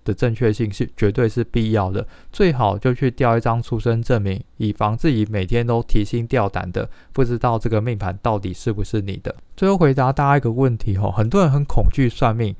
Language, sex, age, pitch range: Chinese, male, 20-39, 105-130 Hz